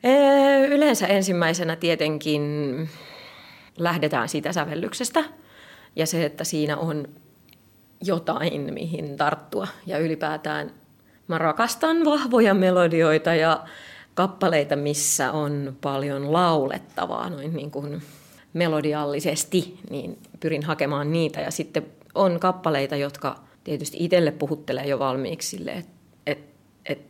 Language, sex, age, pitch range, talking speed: Finnish, female, 30-49, 145-210 Hz, 100 wpm